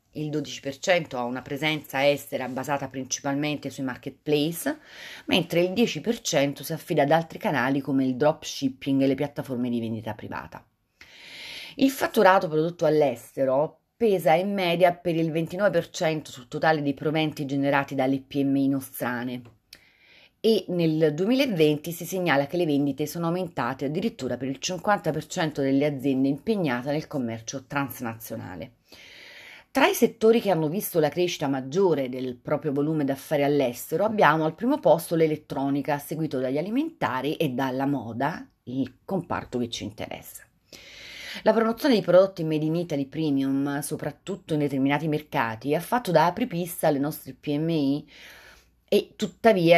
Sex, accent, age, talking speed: female, native, 30-49, 140 wpm